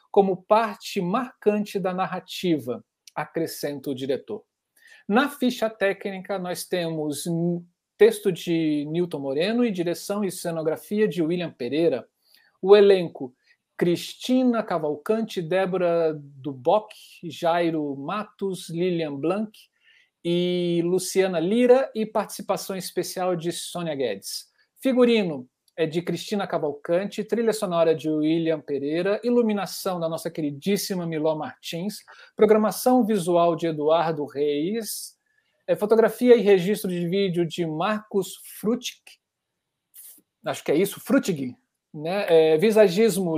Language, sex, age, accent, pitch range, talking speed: Portuguese, male, 50-69, Brazilian, 165-210 Hz, 105 wpm